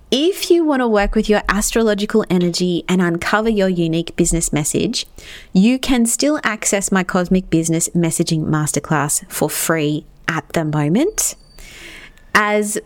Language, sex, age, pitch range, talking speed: English, female, 30-49, 165-220 Hz, 140 wpm